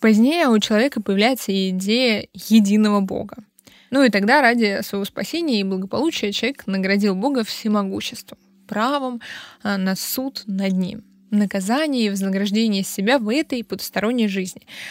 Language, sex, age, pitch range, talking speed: Russian, female, 20-39, 200-255 Hz, 135 wpm